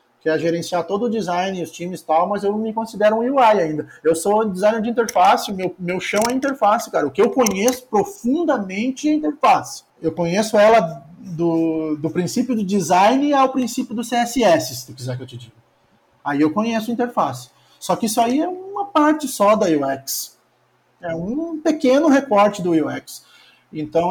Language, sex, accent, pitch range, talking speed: Portuguese, male, Brazilian, 170-225 Hz, 185 wpm